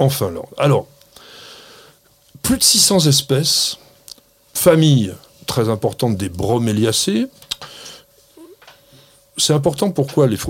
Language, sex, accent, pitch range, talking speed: French, male, French, 115-180 Hz, 90 wpm